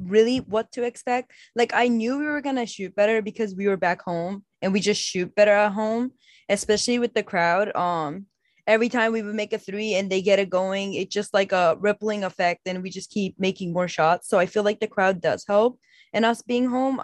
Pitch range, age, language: 195-235 Hz, 10-29, English